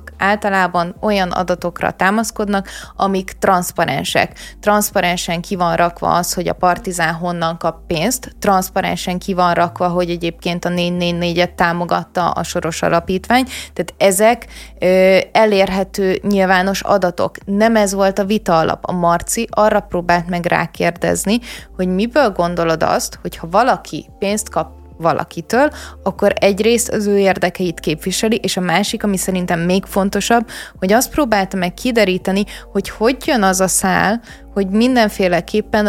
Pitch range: 175-210 Hz